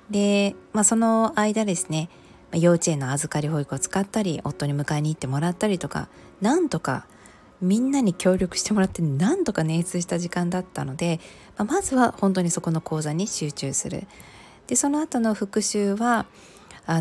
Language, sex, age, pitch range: Japanese, female, 20-39, 150-205 Hz